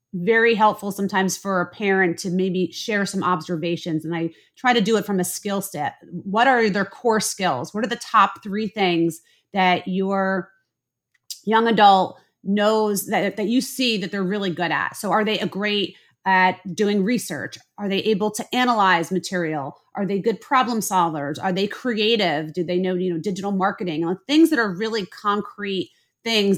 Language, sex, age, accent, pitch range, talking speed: English, female, 30-49, American, 185-230 Hz, 185 wpm